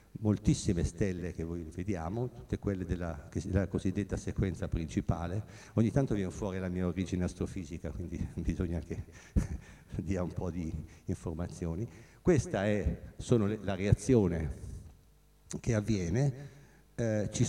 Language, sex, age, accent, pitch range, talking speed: Italian, male, 60-79, native, 90-120 Hz, 125 wpm